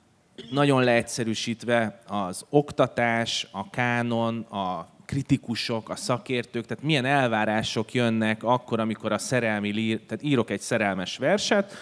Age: 30-49